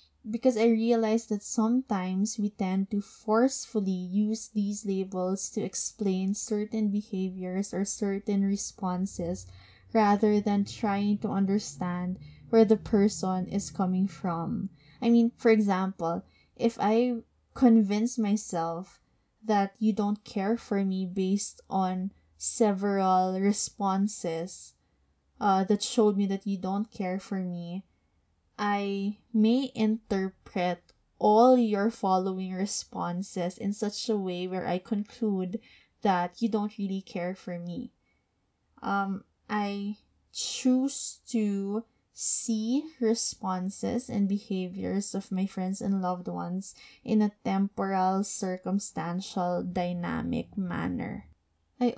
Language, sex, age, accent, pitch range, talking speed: English, female, 20-39, Filipino, 185-220 Hz, 115 wpm